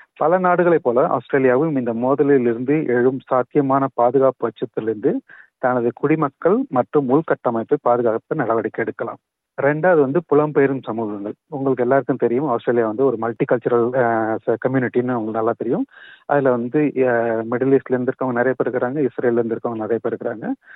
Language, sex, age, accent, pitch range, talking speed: Tamil, male, 40-59, native, 120-150 Hz, 140 wpm